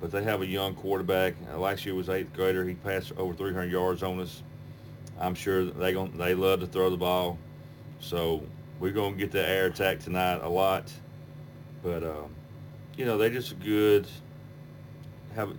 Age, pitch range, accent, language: 40-59, 90-105 Hz, American, English